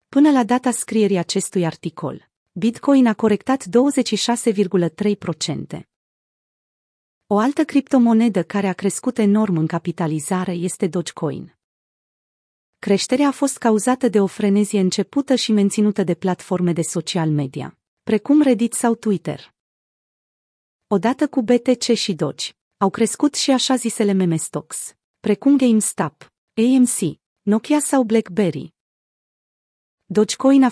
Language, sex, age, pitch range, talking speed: Romanian, female, 30-49, 185-245 Hz, 115 wpm